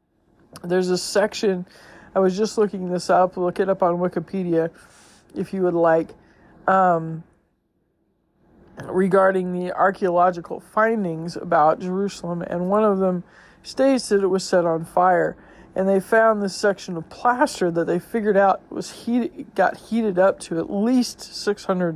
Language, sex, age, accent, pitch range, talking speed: English, male, 40-59, American, 170-205 Hz, 155 wpm